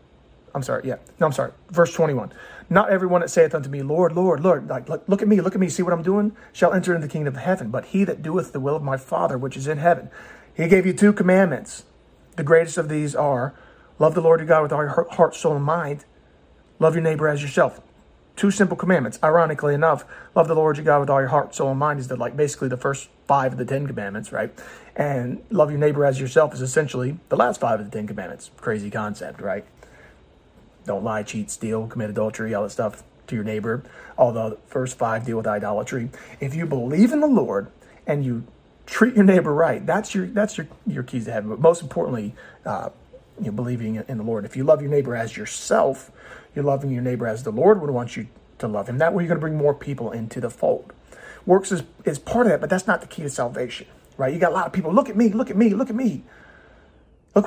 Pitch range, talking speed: 120-175 Hz, 245 wpm